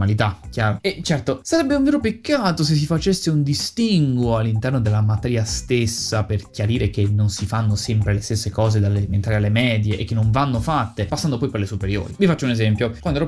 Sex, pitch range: male, 105-140 Hz